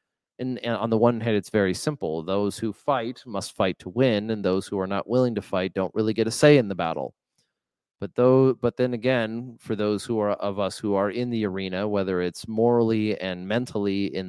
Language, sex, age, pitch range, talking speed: English, male, 30-49, 95-120 Hz, 225 wpm